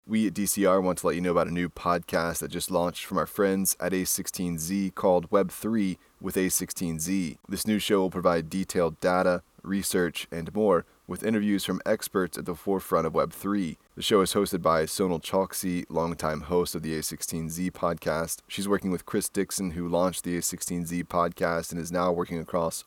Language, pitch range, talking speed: English, 85-95 Hz, 185 wpm